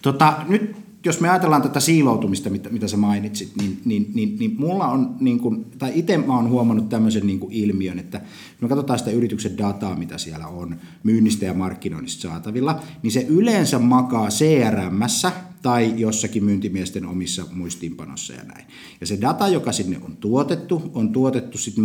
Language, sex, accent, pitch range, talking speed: Finnish, male, native, 105-140 Hz, 160 wpm